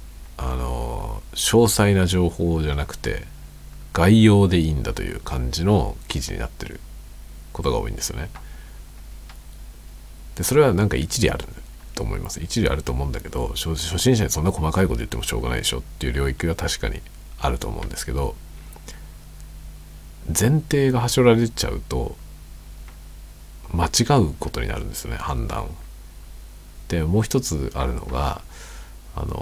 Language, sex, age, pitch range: Japanese, male, 50-69, 70-100 Hz